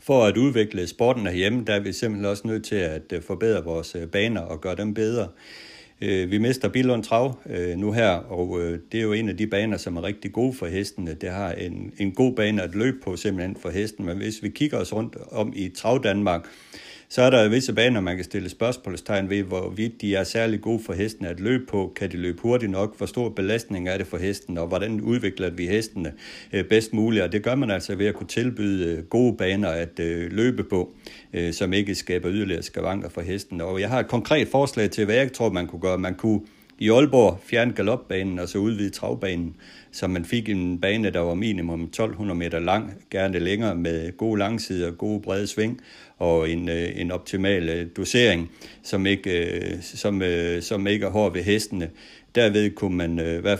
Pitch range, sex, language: 90-110 Hz, male, Danish